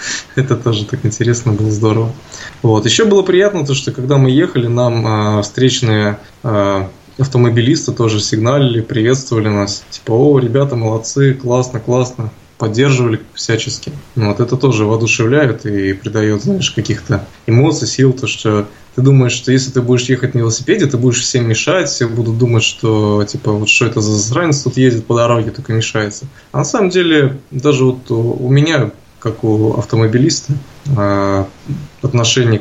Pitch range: 105-130 Hz